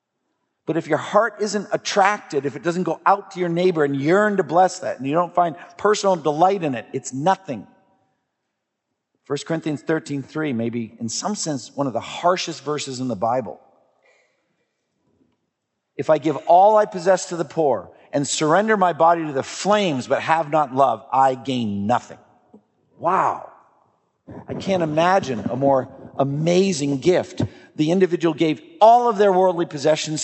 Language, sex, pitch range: English, male, 130-175 Hz